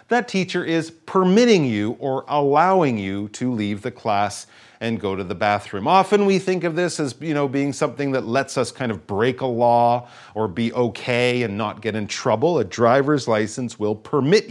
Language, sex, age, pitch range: Chinese, male, 40-59, 110-165 Hz